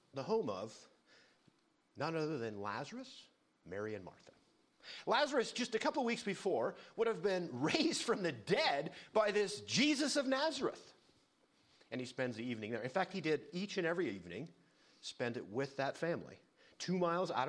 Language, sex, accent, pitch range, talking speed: English, male, American, 140-220 Hz, 170 wpm